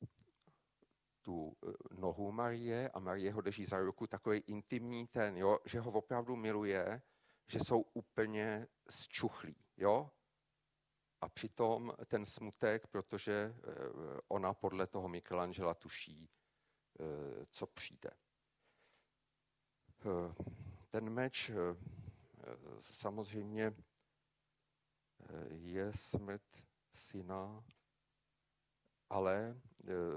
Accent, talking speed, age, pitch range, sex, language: native, 80 wpm, 50-69, 95-120 Hz, male, Czech